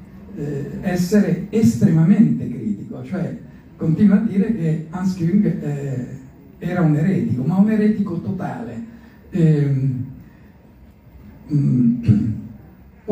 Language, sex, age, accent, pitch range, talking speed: Italian, male, 60-79, native, 150-205 Hz, 80 wpm